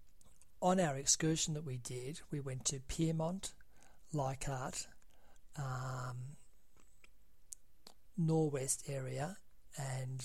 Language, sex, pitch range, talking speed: English, male, 130-145 Hz, 90 wpm